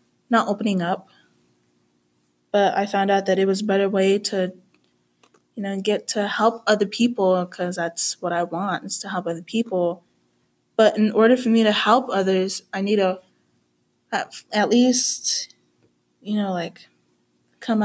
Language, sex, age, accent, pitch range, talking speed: English, female, 20-39, American, 170-215 Hz, 165 wpm